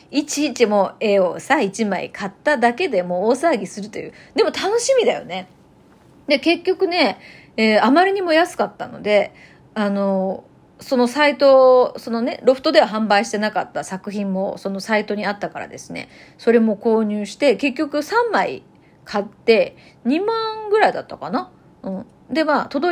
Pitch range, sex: 200-285 Hz, female